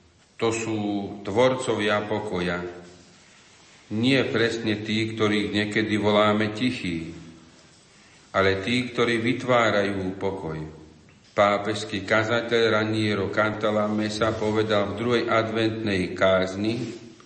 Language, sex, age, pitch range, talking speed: Slovak, male, 50-69, 100-115 Hz, 90 wpm